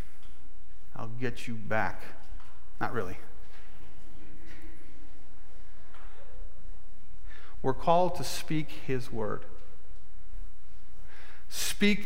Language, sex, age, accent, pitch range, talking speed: English, male, 40-59, American, 115-175 Hz, 60 wpm